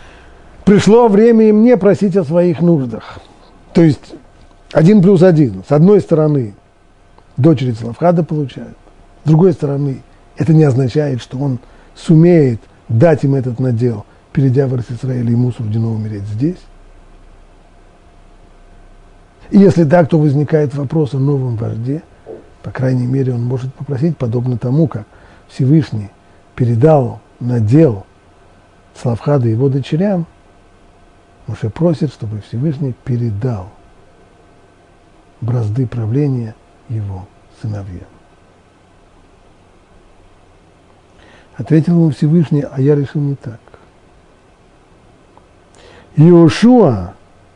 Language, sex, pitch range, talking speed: Russian, male, 100-155 Hz, 100 wpm